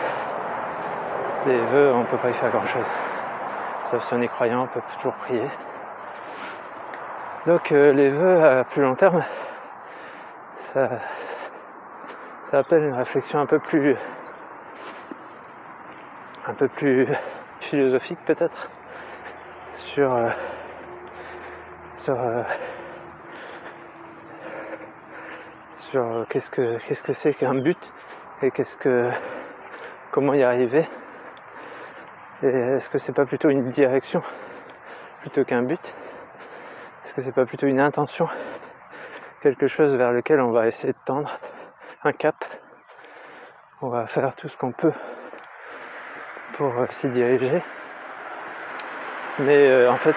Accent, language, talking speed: French, French, 120 wpm